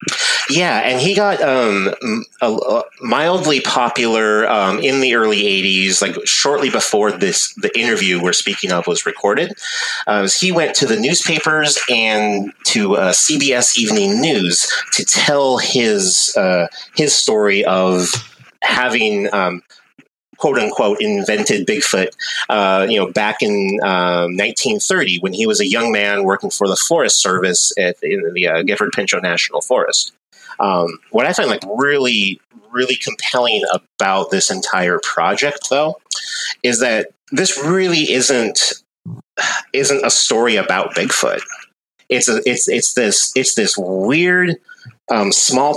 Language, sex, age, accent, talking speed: English, male, 30-49, American, 145 wpm